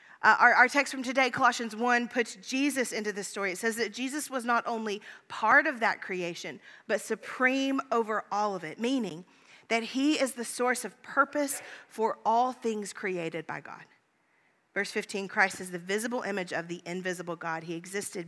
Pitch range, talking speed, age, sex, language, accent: 200-250 Hz, 185 wpm, 40-59, female, English, American